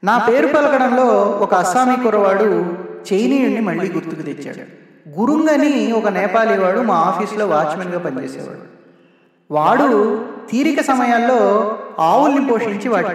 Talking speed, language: 110 wpm, Telugu